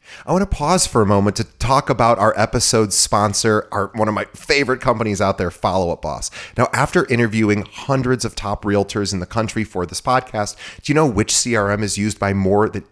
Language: English